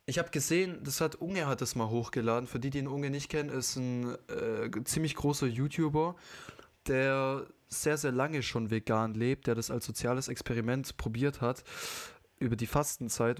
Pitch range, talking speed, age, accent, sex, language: 115-140 Hz, 180 wpm, 20-39, German, male, German